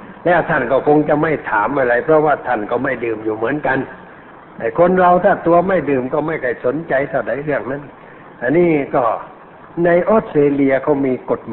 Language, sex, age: Thai, male, 60-79